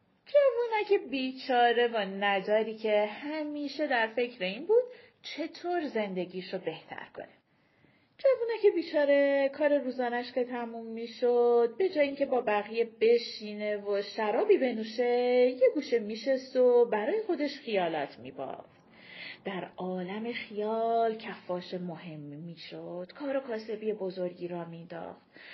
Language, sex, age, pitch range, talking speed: Persian, female, 30-49, 200-280 Hz, 120 wpm